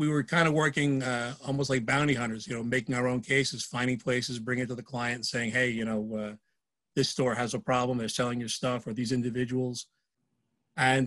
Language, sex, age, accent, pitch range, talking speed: English, male, 40-59, American, 120-135 Hz, 230 wpm